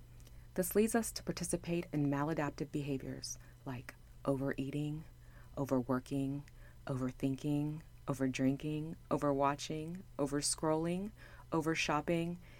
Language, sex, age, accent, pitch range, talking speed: English, female, 30-49, American, 120-150 Hz, 75 wpm